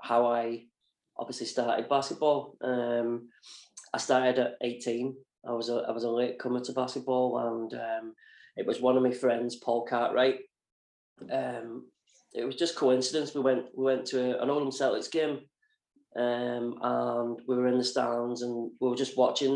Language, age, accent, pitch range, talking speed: English, 20-39, British, 120-135 Hz, 170 wpm